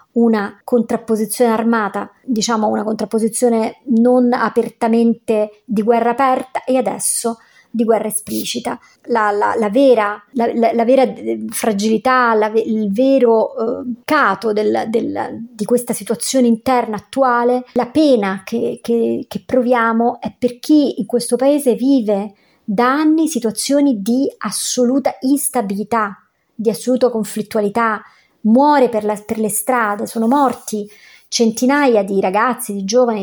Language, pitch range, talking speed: Italian, 215-250 Hz, 115 wpm